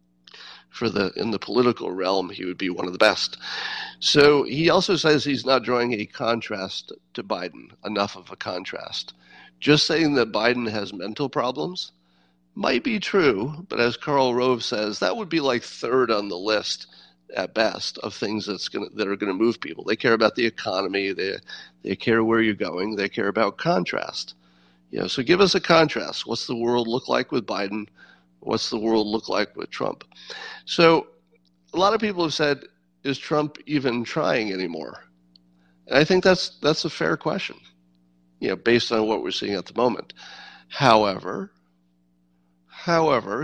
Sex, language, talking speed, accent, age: male, English, 180 wpm, American, 40-59